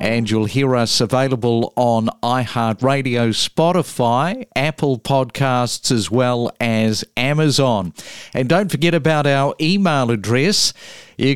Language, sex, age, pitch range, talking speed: English, male, 50-69, 125-160 Hz, 115 wpm